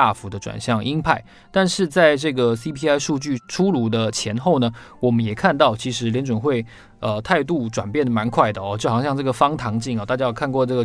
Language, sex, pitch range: Chinese, male, 105-135 Hz